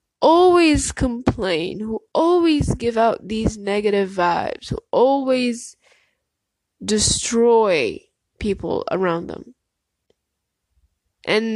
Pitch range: 205-260 Hz